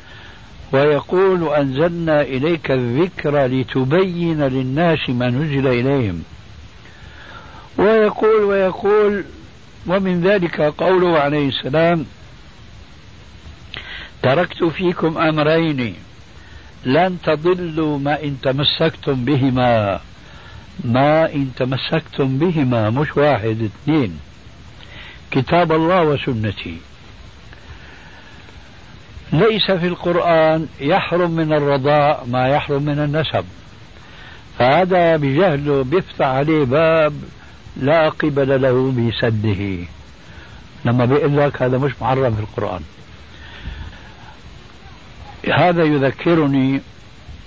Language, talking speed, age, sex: Arabic, 80 wpm, 60-79, male